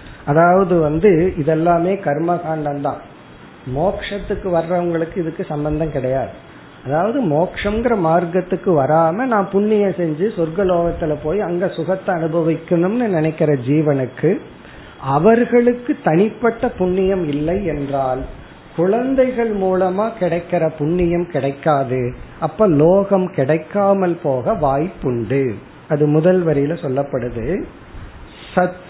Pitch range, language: 155-195 Hz, Tamil